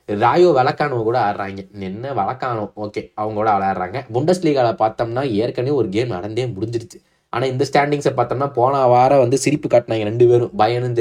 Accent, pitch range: native, 110-155 Hz